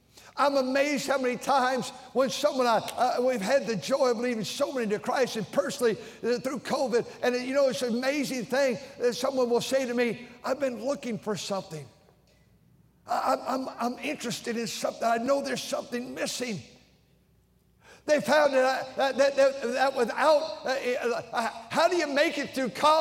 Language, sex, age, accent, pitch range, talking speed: English, male, 50-69, American, 225-270 Hz, 175 wpm